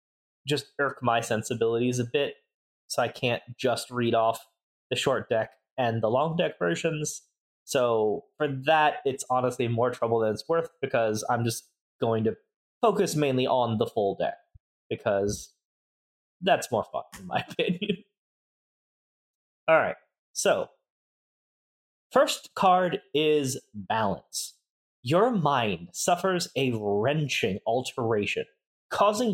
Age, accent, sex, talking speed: 20-39, American, male, 125 wpm